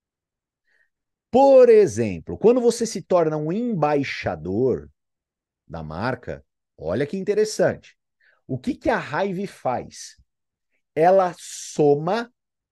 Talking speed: 100 wpm